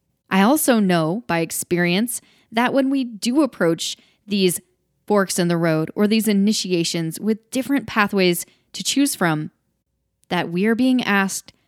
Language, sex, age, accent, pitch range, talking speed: English, female, 10-29, American, 170-220 Hz, 150 wpm